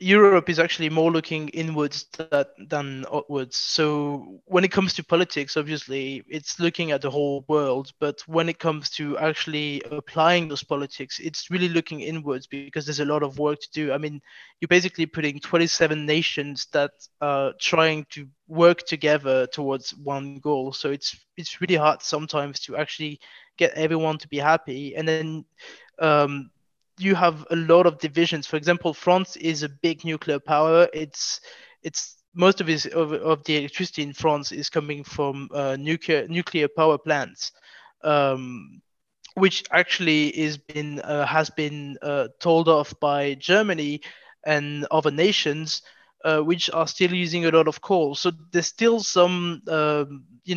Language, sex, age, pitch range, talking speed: English, male, 20-39, 145-170 Hz, 165 wpm